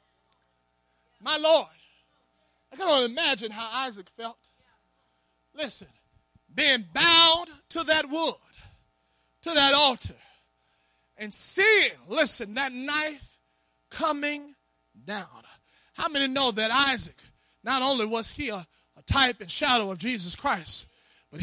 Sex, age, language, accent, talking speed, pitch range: male, 30-49, English, American, 120 wpm, 240-320 Hz